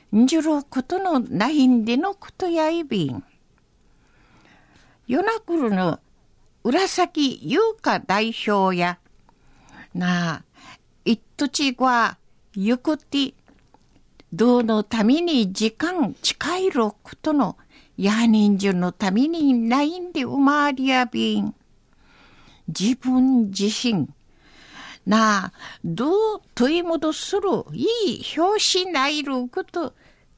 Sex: female